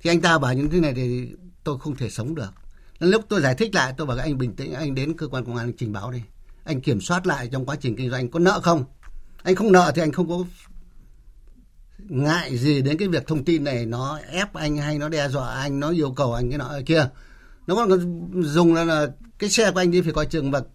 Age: 60-79